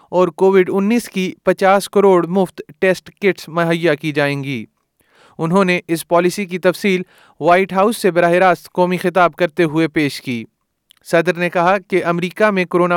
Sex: male